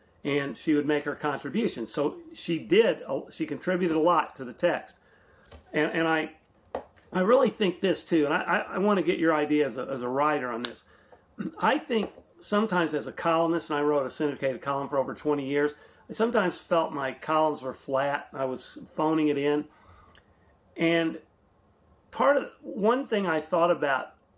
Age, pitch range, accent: 40-59, 150-185 Hz, American